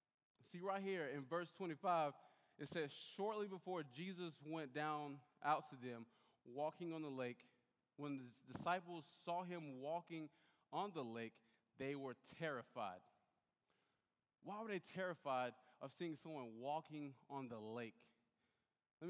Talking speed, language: 140 wpm, English